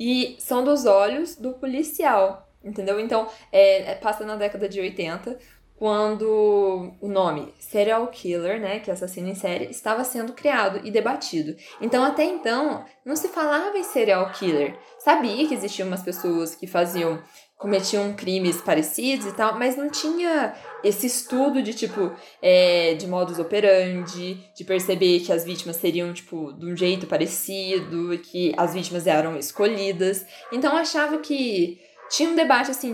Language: Portuguese